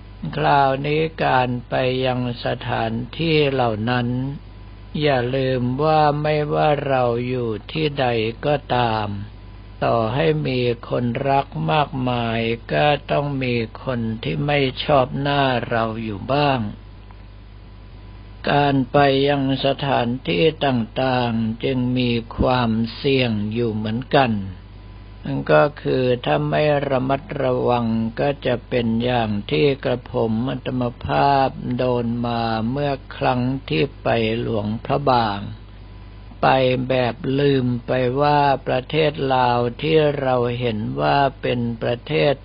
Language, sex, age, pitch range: Thai, male, 60-79, 110-135 Hz